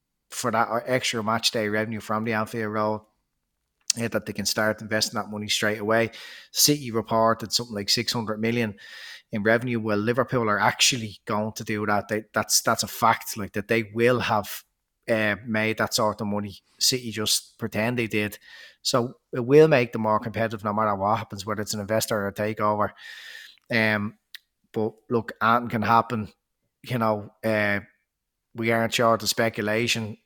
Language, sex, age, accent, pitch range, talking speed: English, male, 30-49, Irish, 105-120 Hz, 175 wpm